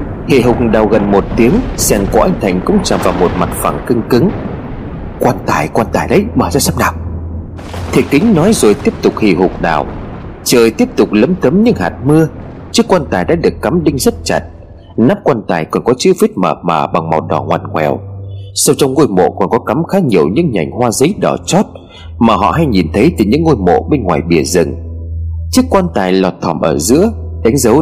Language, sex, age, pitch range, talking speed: Vietnamese, male, 30-49, 85-135 Hz, 225 wpm